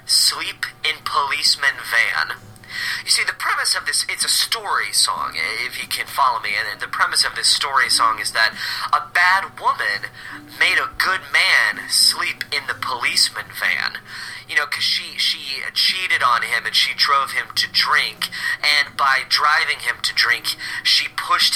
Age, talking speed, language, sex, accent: 30-49, 175 wpm, English, male, American